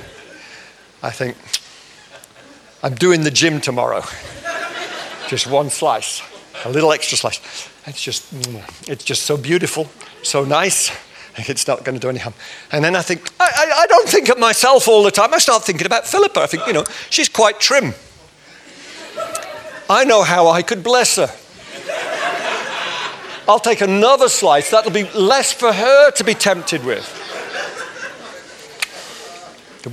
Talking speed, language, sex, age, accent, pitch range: 150 wpm, English, male, 50-69, British, 145-230 Hz